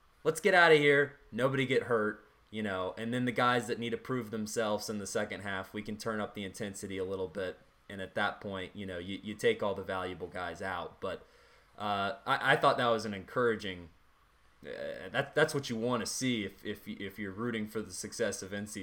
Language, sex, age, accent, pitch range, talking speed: English, male, 20-39, American, 100-130 Hz, 235 wpm